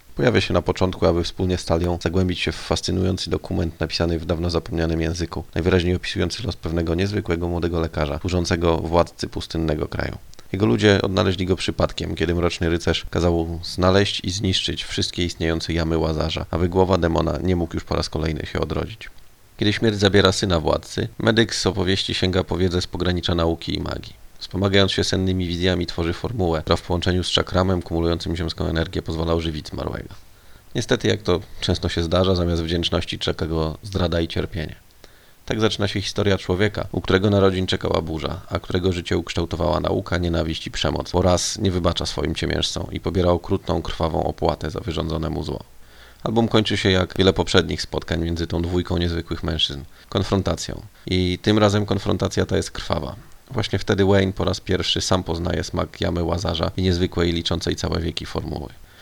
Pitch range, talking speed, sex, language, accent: 85-95 Hz, 175 wpm, male, Polish, native